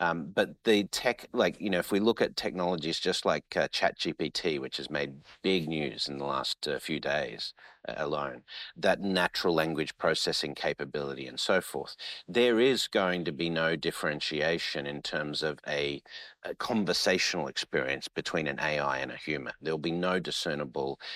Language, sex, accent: English, male, Australian